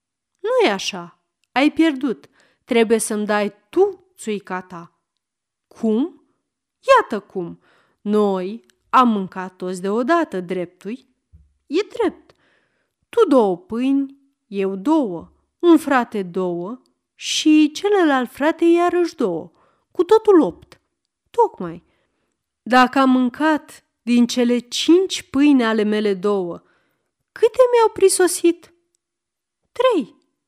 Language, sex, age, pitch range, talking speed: Romanian, female, 30-49, 205-315 Hz, 105 wpm